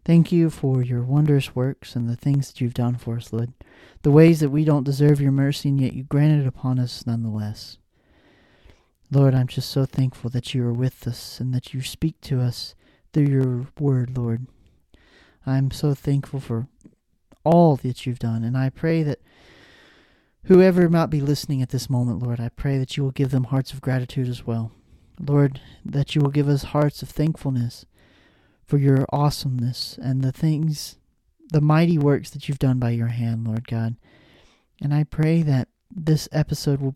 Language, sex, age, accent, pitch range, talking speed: English, male, 40-59, American, 125-145 Hz, 190 wpm